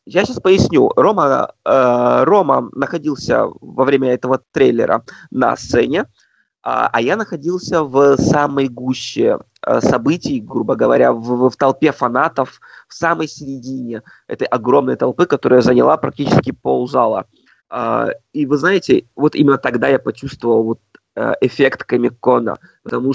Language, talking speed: Russian, 125 wpm